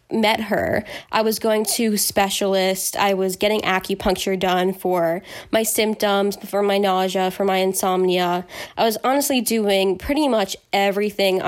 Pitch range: 190-215 Hz